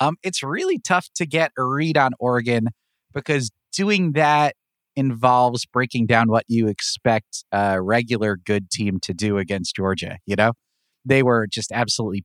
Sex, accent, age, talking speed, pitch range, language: male, American, 30-49, 160 wpm, 105-130 Hz, English